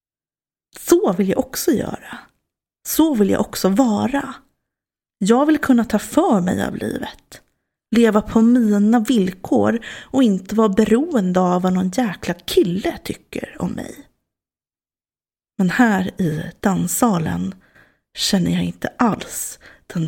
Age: 30-49